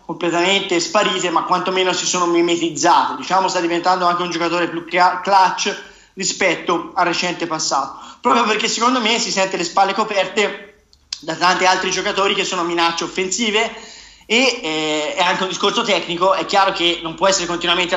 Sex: male